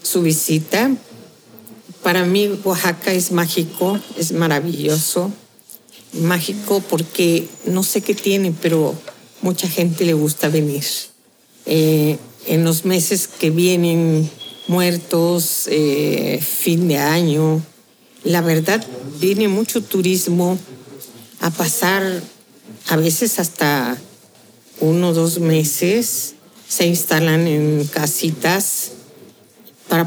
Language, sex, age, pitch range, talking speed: Spanish, female, 50-69, 155-185 Hz, 100 wpm